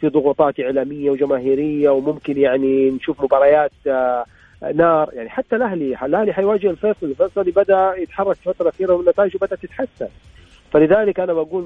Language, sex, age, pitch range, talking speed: Arabic, male, 40-59, 135-195 Hz, 140 wpm